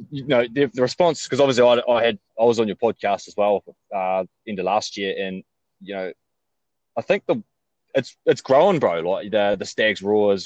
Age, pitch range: 20-39, 100-125 Hz